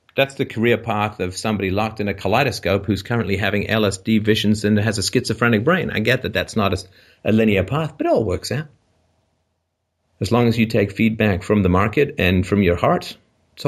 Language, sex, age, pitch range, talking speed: English, male, 50-69, 90-115 Hz, 210 wpm